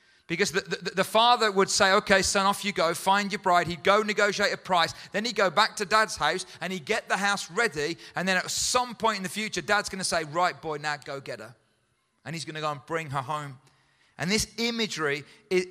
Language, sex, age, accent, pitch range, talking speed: English, male, 40-59, British, 160-205 Hz, 245 wpm